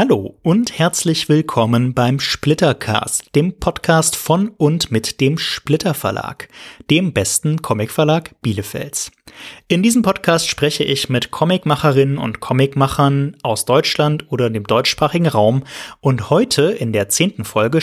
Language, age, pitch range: German, 30-49, 130-165 Hz